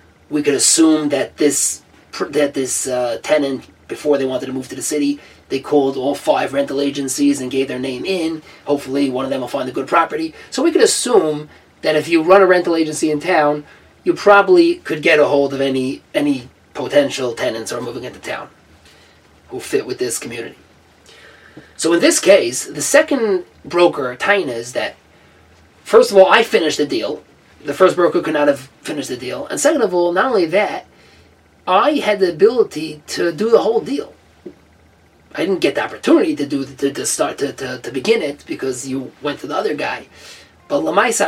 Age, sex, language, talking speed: 30-49, male, English, 200 wpm